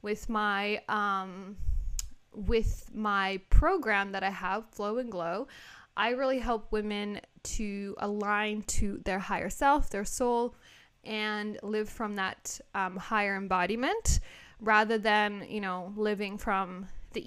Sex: female